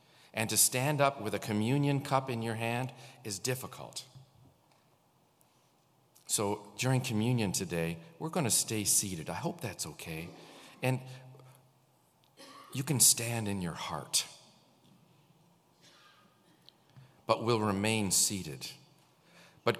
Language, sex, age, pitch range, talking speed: English, male, 50-69, 115-165 Hz, 115 wpm